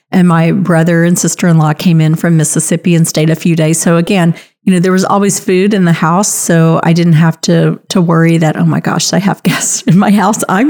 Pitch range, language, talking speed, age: 170-205 Hz, English, 240 wpm, 40-59